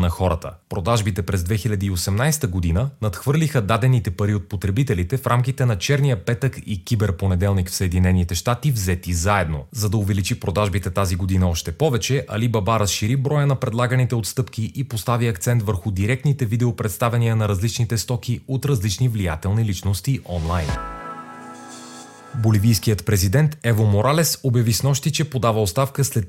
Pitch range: 100-130 Hz